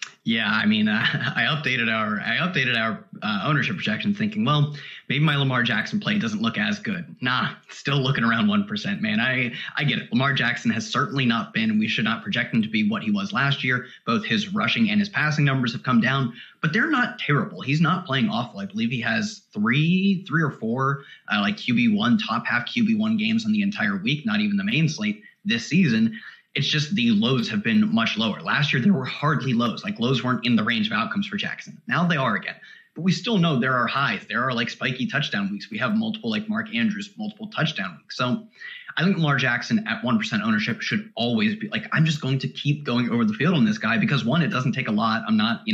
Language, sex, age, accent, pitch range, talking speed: English, male, 30-49, American, 150-215 Hz, 240 wpm